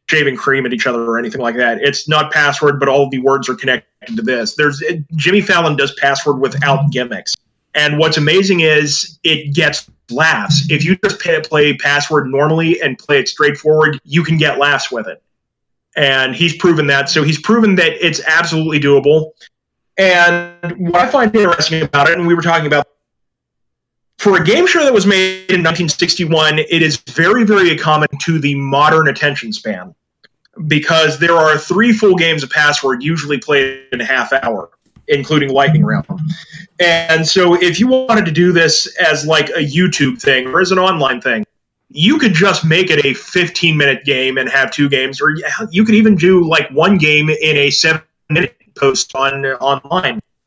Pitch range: 145-175 Hz